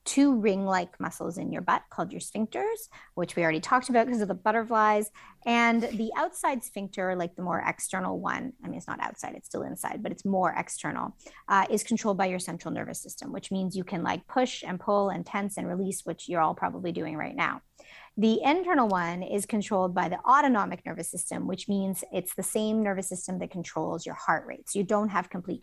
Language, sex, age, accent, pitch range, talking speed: English, female, 30-49, American, 185-225 Hz, 220 wpm